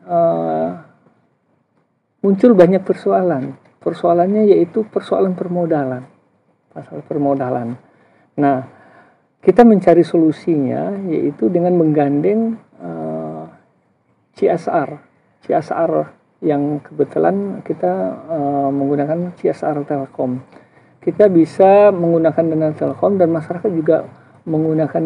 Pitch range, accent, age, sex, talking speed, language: 145-180 Hz, native, 50-69, male, 85 wpm, Indonesian